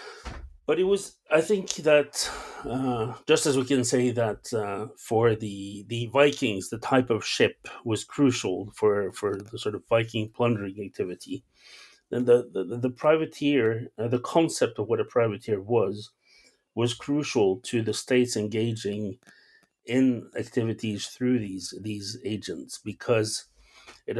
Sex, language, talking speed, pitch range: male, English, 145 wpm, 105-125 Hz